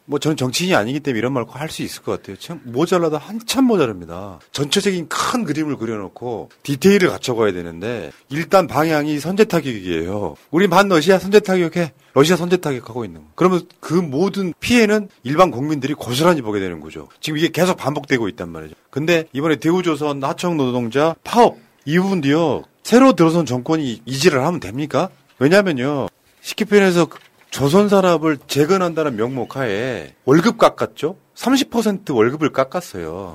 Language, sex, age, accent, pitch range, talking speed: English, male, 40-59, Korean, 130-185 Hz, 130 wpm